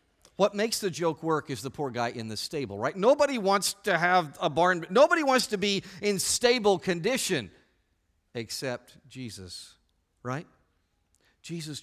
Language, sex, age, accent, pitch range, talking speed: English, male, 50-69, American, 120-190 Hz, 150 wpm